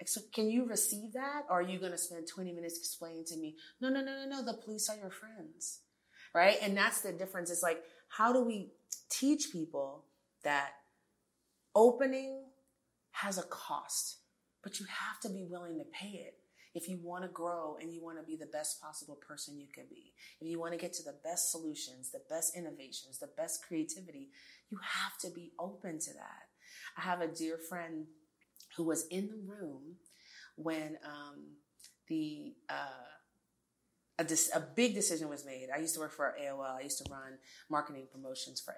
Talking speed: 195 wpm